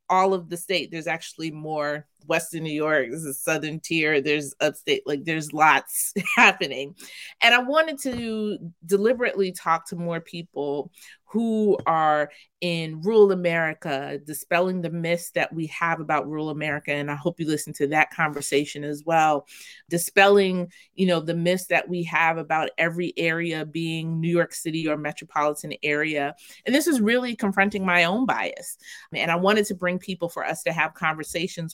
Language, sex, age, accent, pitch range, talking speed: English, female, 30-49, American, 155-205 Hz, 170 wpm